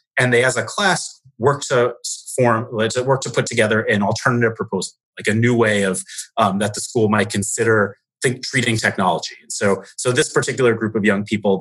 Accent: American